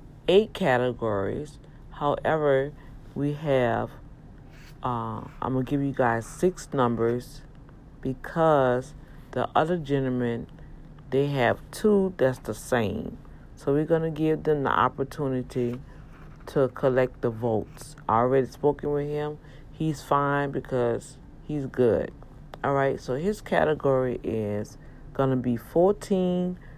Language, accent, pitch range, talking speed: English, American, 125-150 Hz, 120 wpm